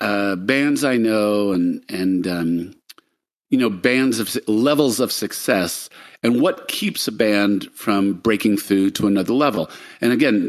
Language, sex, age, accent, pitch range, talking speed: English, male, 50-69, American, 95-115 Hz, 155 wpm